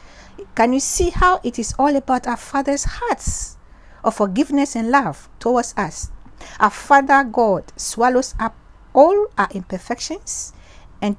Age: 50-69